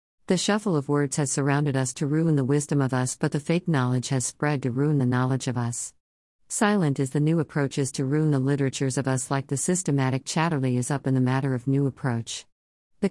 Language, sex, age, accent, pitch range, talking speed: English, female, 50-69, American, 125-150 Hz, 225 wpm